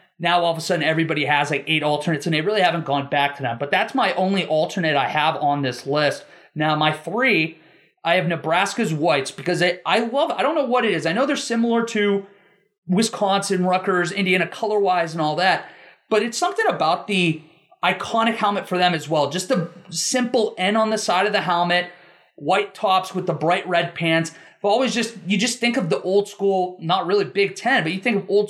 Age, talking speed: 30-49, 215 wpm